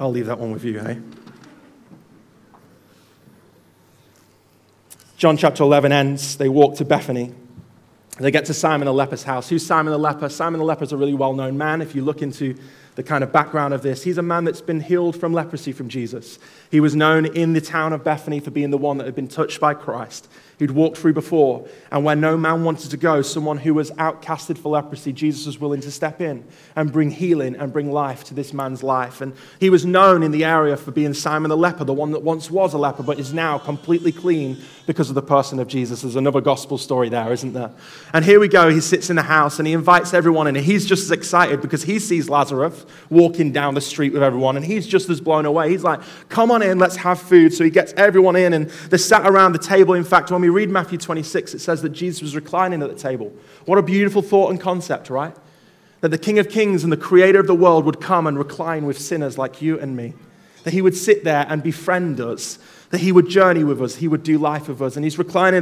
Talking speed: 240 wpm